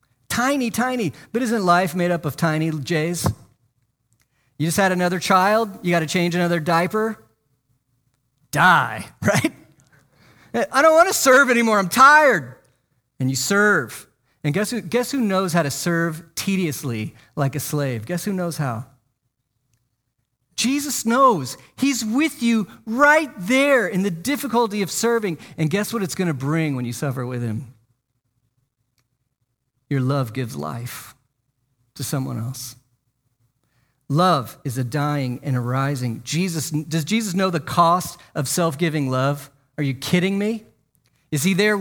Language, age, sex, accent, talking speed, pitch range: English, 40-59, male, American, 150 wpm, 130-195 Hz